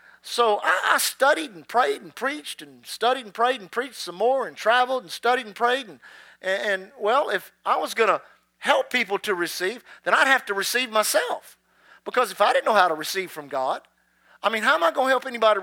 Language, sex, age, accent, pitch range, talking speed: English, male, 50-69, American, 180-240 Hz, 225 wpm